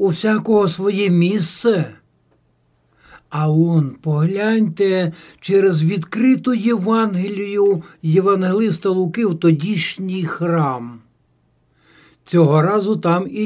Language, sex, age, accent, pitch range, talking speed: Ukrainian, male, 60-79, native, 145-200 Hz, 85 wpm